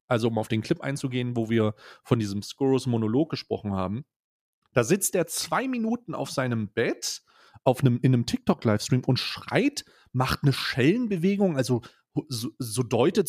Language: German